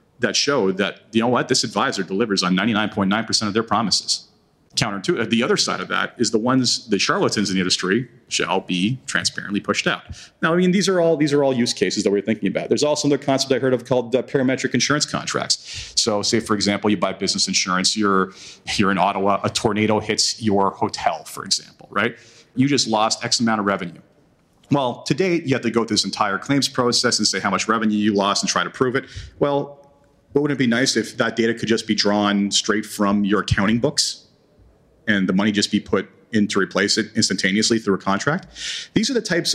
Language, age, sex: English, 40-59, male